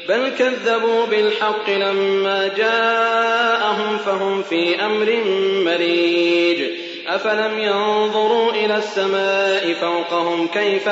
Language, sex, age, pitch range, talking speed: Arabic, male, 30-49, 175-230 Hz, 80 wpm